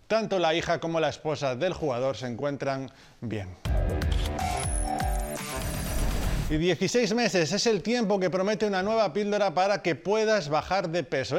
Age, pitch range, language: 30-49, 150-190 Hz, Spanish